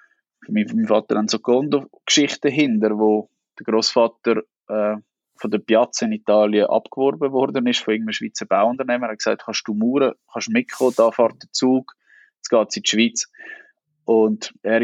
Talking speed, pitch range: 180 wpm, 110-140 Hz